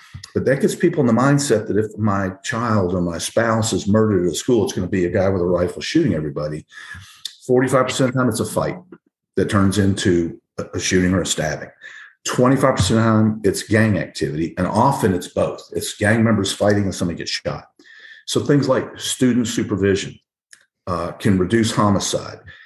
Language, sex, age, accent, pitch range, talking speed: English, male, 50-69, American, 95-125 Hz, 200 wpm